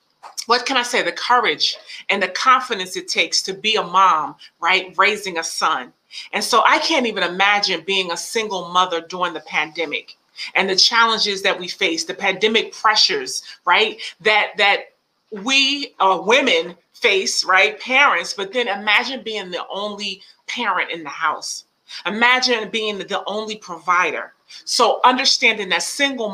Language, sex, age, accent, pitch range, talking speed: English, female, 30-49, American, 185-235 Hz, 155 wpm